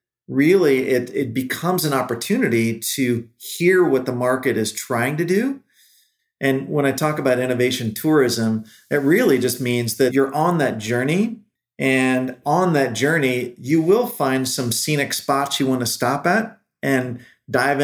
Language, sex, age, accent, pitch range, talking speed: English, male, 40-59, American, 120-140 Hz, 160 wpm